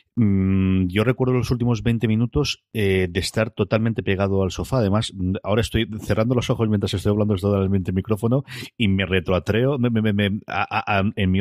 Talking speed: 160 wpm